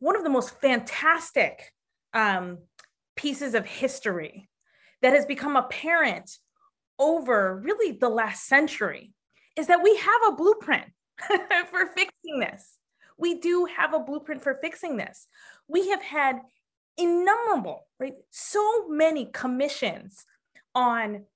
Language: English